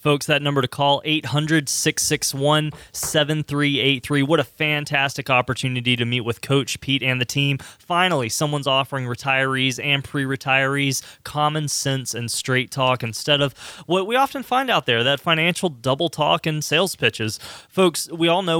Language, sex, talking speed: English, male, 155 wpm